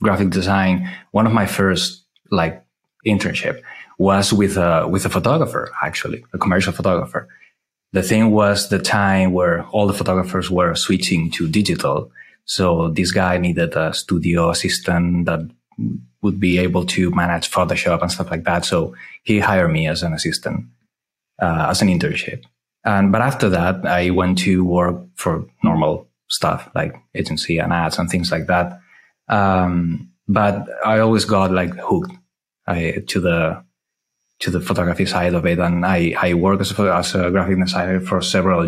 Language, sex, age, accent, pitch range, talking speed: English, male, 30-49, Spanish, 90-100 Hz, 165 wpm